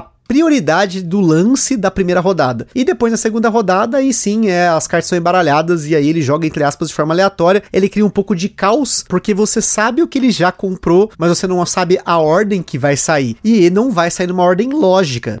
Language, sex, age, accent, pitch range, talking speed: Portuguese, male, 30-49, Brazilian, 165-215 Hz, 225 wpm